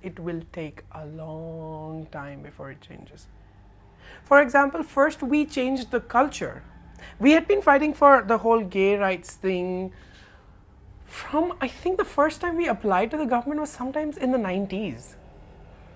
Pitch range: 140-230 Hz